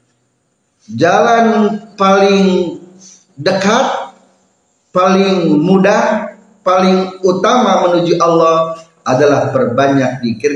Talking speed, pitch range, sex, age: 70 wpm, 130-190 Hz, male, 40-59